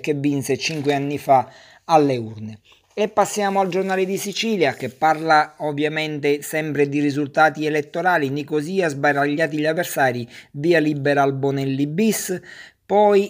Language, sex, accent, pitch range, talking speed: Italian, male, native, 135-165 Hz, 135 wpm